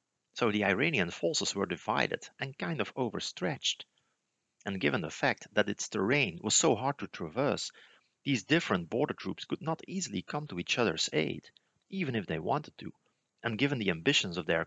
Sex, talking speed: male, 185 wpm